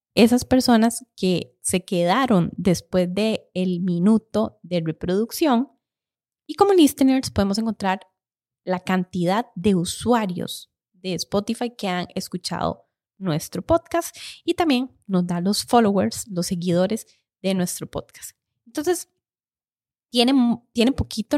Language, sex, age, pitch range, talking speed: Spanish, female, 20-39, 180-235 Hz, 110 wpm